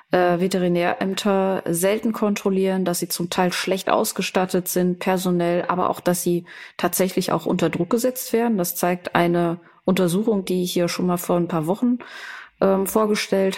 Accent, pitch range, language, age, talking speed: German, 180-215 Hz, German, 30-49, 160 wpm